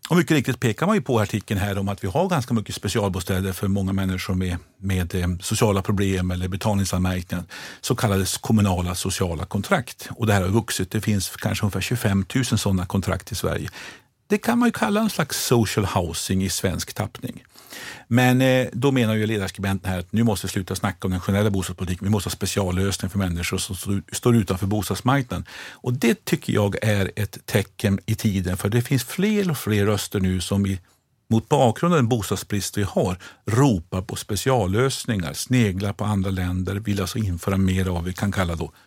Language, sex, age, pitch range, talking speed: Swedish, male, 50-69, 95-115 Hz, 195 wpm